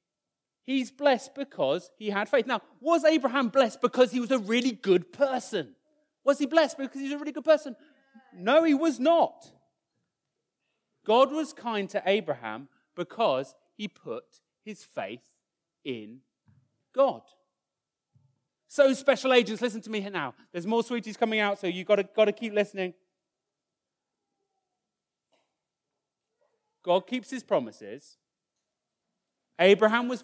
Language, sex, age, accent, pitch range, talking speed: English, male, 30-49, British, 200-275 Hz, 140 wpm